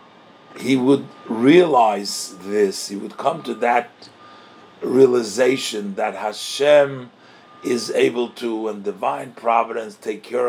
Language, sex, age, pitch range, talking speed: English, male, 50-69, 110-180 Hz, 115 wpm